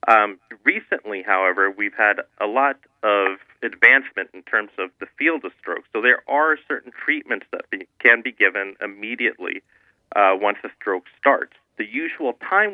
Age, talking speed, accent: 40-59, 160 wpm, American